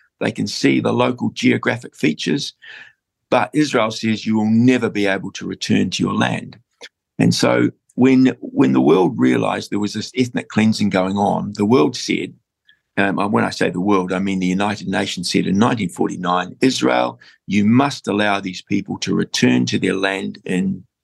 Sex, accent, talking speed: male, Australian, 185 wpm